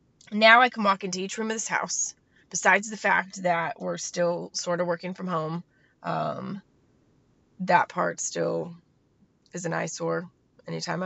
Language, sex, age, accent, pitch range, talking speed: English, female, 20-39, American, 175-205 Hz, 155 wpm